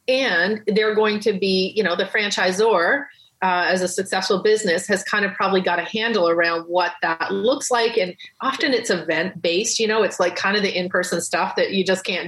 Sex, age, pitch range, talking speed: female, 30-49, 180-215 Hz, 215 wpm